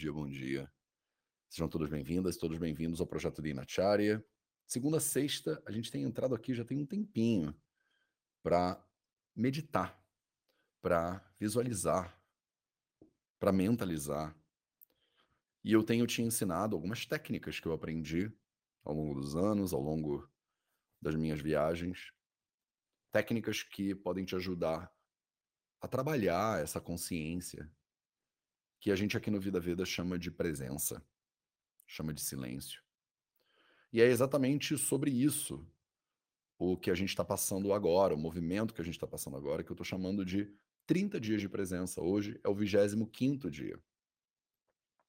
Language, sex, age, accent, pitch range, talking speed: English, male, 40-59, Brazilian, 80-110 Hz, 140 wpm